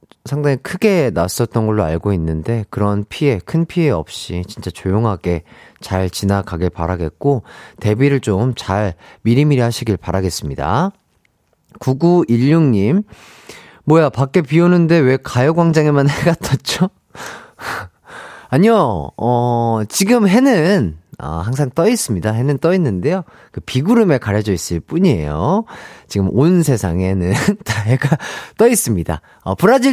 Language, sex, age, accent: Korean, male, 30-49, native